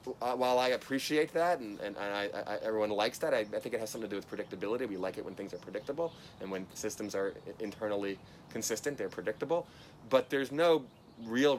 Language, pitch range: English, 105-135 Hz